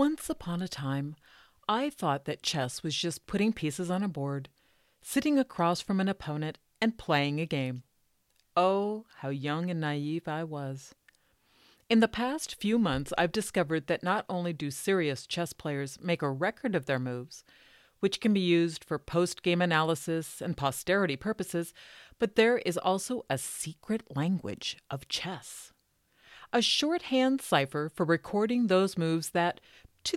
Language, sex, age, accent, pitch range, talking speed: English, female, 40-59, American, 150-210 Hz, 155 wpm